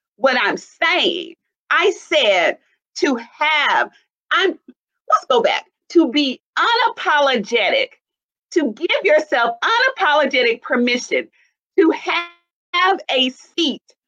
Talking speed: 100 wpm